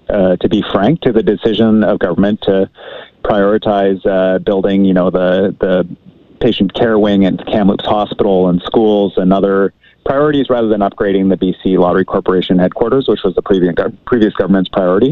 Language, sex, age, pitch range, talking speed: English, male, 30-49, 95-110 Hz, 175 wpm